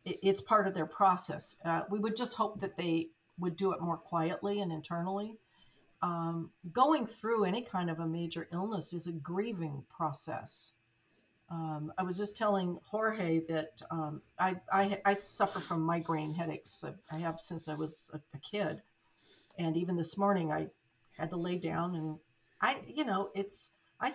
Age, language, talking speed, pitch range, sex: 50-69, English, 175 wpm, 165-210 Hz, female